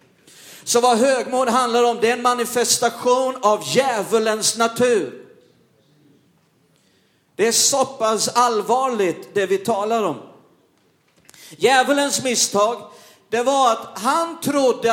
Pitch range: 220-265 Hz